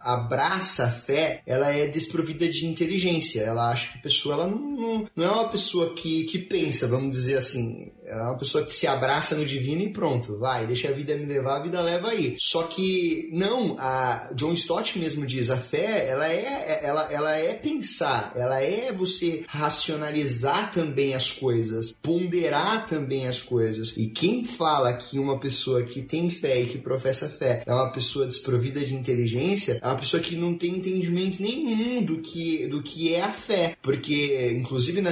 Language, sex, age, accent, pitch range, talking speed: Portuguese, male, 30-49, Brazilian, 130-170 Hz, 190 wpm